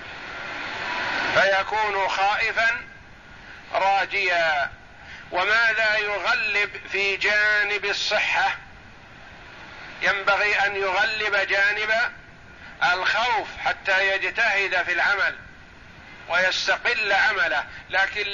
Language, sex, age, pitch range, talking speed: Arabic, male, 50-69, 195-220 Hz, 65 wpm